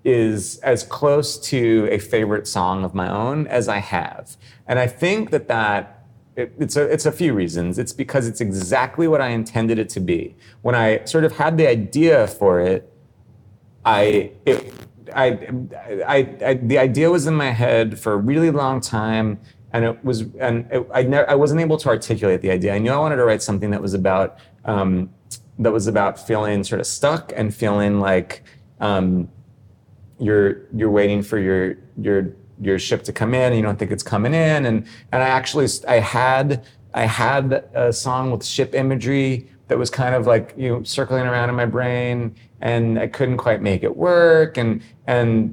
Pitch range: 105-130 Hz